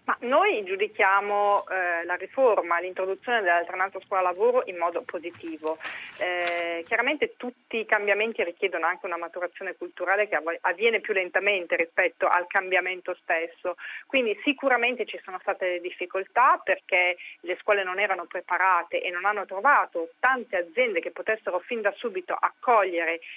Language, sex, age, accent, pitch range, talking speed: Italian, female, 40-59, native, 180-235 Hz, 140 wpm